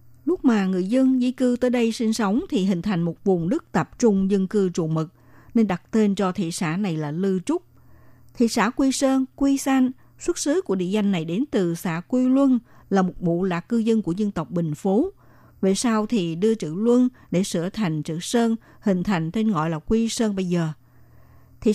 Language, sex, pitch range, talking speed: Vietnamese, female, 180-240 Hz, 225 wpm